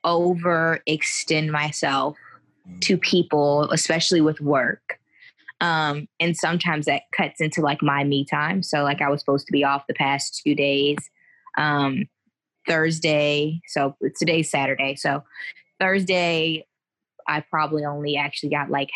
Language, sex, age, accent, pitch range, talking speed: English, female, 20-39, American, 145-175 Hz, 135 wpm